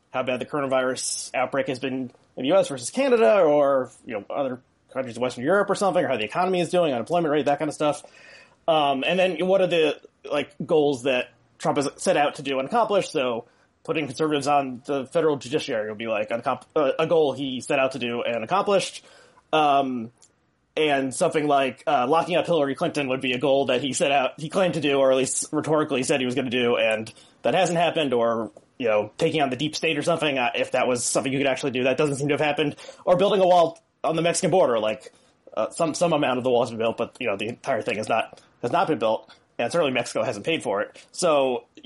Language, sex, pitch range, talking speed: English, male, 130-170 Hz, 245 wpm